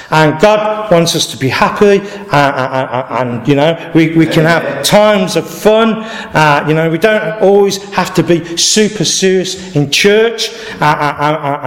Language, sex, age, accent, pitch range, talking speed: English, male, 50-69, British, 155-200 Hz, 185 wpm